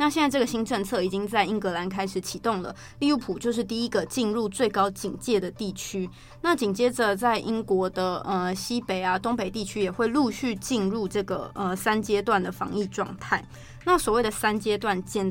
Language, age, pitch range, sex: Chinese, 20-39, 195-245 Hz, female